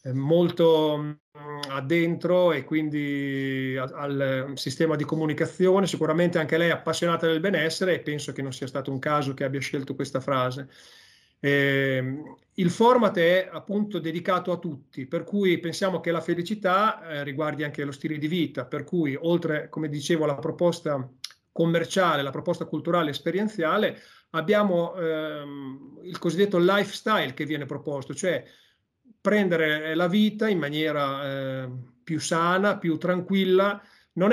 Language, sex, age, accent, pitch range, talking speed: Italian, male, 40-59, native, 145-180 Hz, 140 wpm